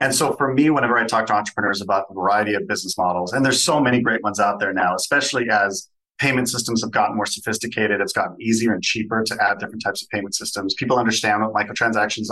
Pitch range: 100-125 Hz